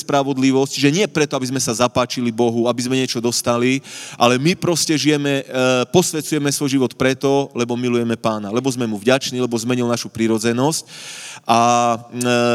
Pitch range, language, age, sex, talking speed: 120-150 Hz, Slovak, 30-49, male, 165 wpm